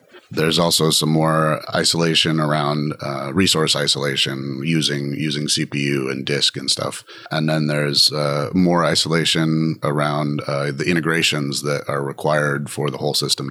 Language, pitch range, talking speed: English, 75-85 Hz, 145 wpm